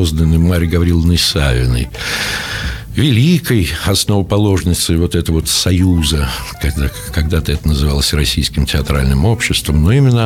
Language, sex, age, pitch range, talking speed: Russian, male, 60-79, 75-100 Hz, 100 wpm